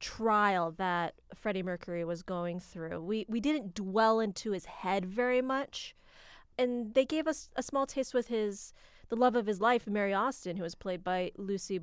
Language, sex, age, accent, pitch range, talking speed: English, female, 30-49, American, 195-250 Hz, 190 wpm